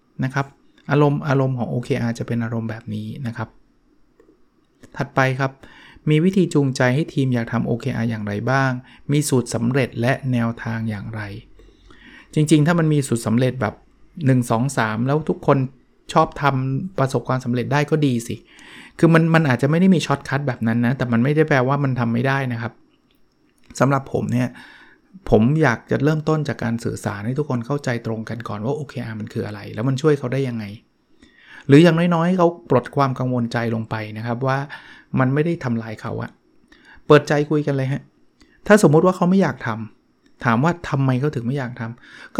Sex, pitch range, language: male, 120-155 Hz, Thai